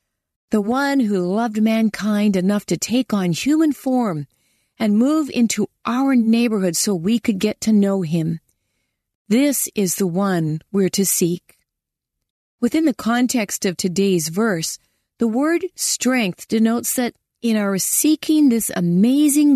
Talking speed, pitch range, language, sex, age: 140 wpm, 185-255 Hz, English, female, 40-59